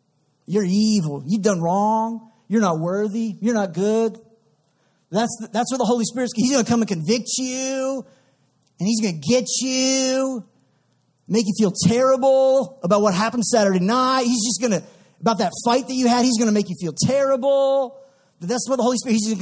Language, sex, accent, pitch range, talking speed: English, male, American, 190-240 Hz, 205 wpm